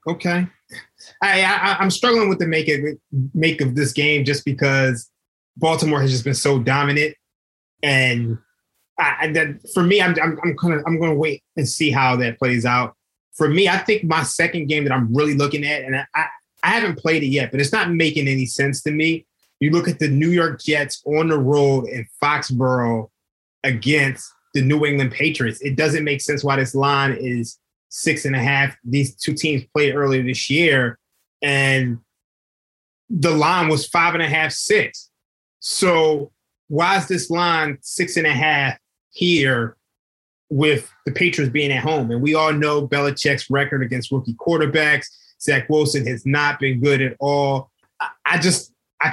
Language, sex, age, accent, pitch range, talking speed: English, male, 20-39, American, 135-160 Hz, 185 wpm